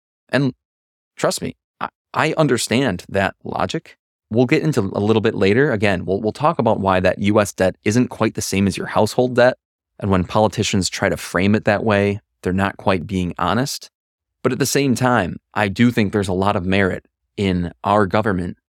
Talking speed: 195 wpm